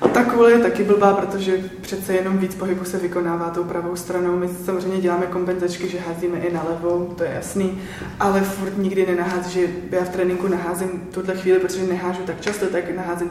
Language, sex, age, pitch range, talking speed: Czech, female, 20-39, 180-195 Hz, 190 wpm